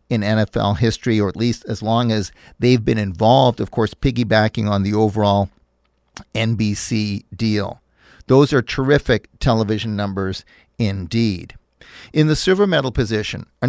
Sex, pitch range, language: male, 110-140 Hz, English